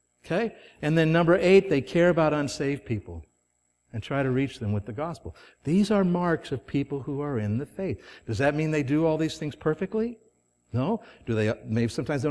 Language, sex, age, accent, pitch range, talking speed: English, male, 60-79, American, 100-145 Hz, 210 wpm